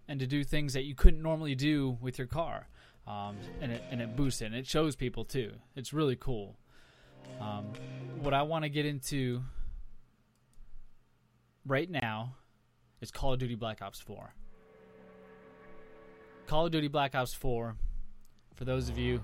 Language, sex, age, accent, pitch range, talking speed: English, male, 20-39, American, 115-145 Hz, 160 wpm